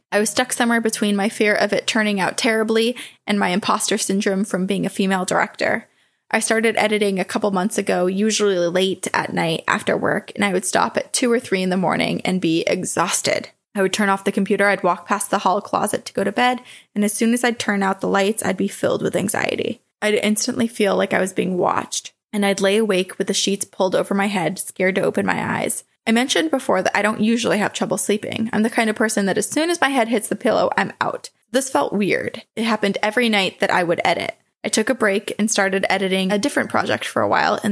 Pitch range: 195-230 Hz